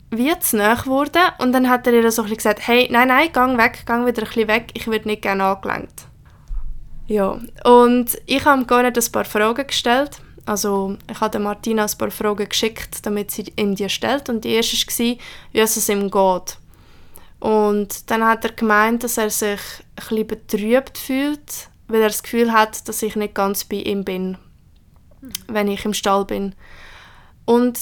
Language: German